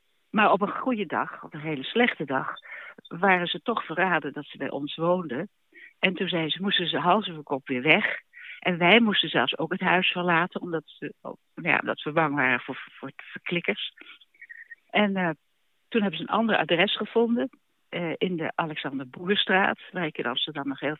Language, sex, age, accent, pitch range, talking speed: Dutch, female, 60-79, Dutch, 150-190 Hz, 175 wpm